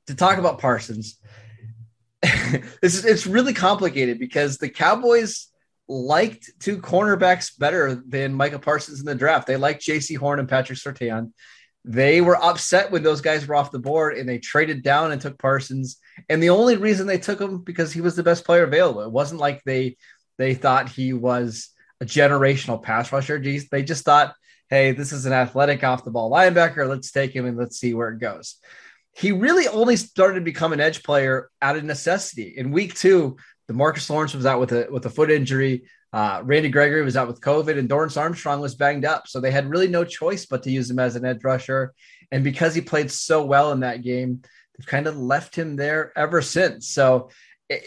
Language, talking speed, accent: English, 205 wpm, American